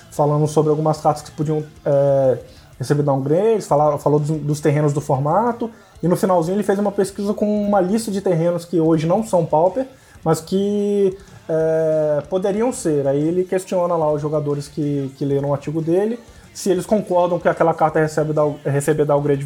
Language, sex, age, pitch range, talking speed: Portuguese, male, 20-39, 150-195 Hz, 175 wpm